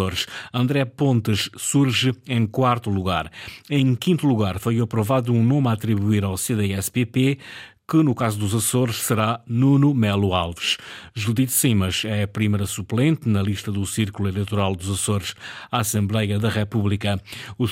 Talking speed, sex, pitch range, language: 150 wpm, male, 105-130 Hz, Portuguese